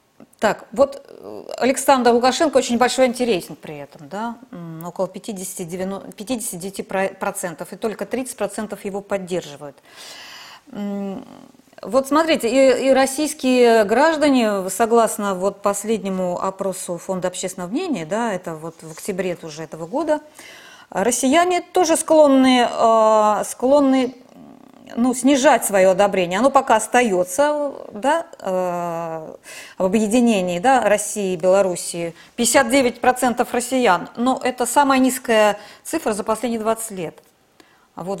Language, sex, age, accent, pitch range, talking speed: Russian, female, 20-39, native, 190-265 Hz, 105 wpm